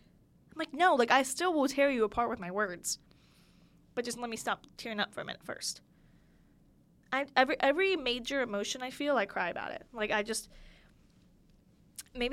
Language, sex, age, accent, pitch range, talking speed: English, female, 10-29, American, 220-285 Hz, 185 wpm